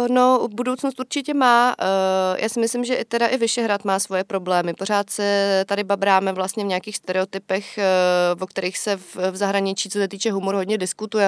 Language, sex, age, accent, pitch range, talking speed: Czech, female, 30-49, native, 190-225 Hz, 180 wpm